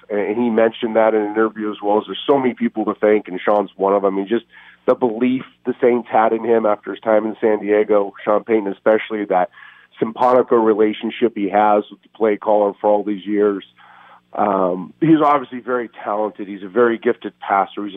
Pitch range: 105-125 Hz